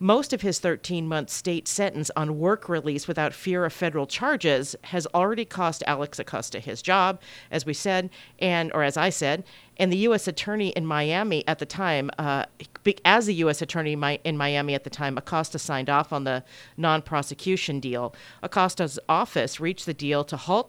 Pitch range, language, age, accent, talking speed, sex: 150-195 Hz, English, 40-59, American, 180 wpm, female